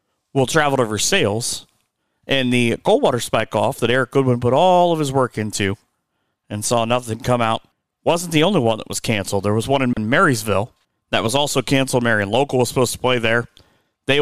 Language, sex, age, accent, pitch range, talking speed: English, male, 30-49, American, 115-135 Hz, 200 wpm